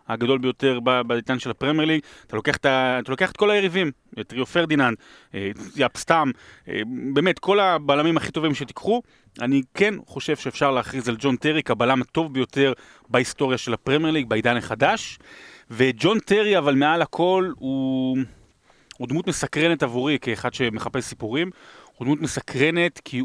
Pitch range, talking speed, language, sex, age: 115-145 Hz, 150 wpm, Hebrew, male, 30-49